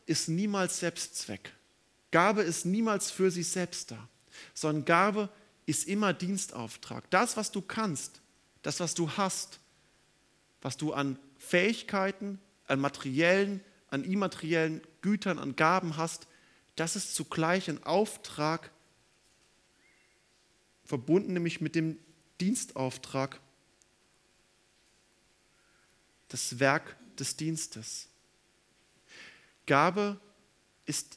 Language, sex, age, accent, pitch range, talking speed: German, male, 40-59, German, 140-180 Hz, 100 wpm